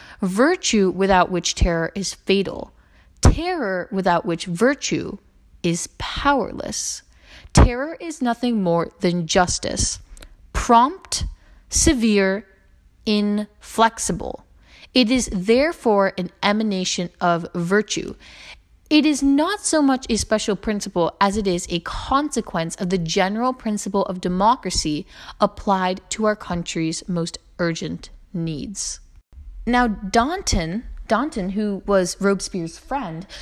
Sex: female